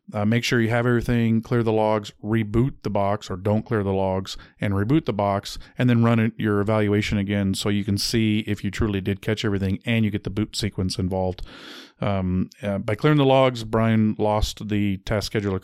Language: English